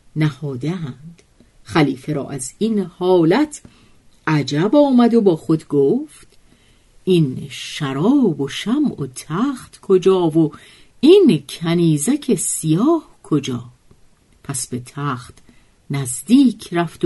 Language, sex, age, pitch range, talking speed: Persian, female, 50-69, 140-220 Hz, 100 wpm